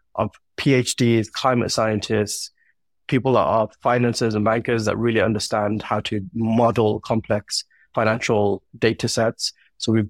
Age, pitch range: 30-49, 110-125 Hz